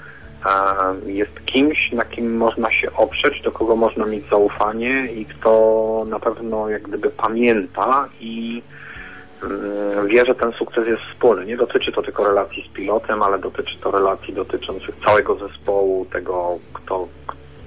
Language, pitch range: Polish, 100-115 Hz